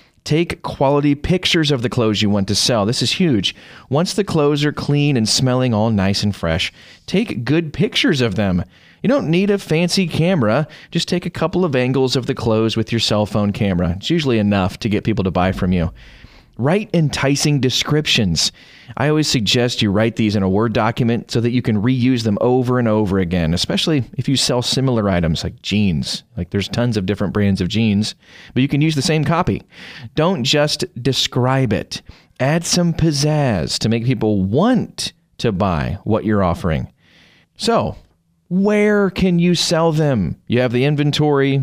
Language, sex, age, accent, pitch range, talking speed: English, male, 30-49, American, 105-150 Hz, 190 wpm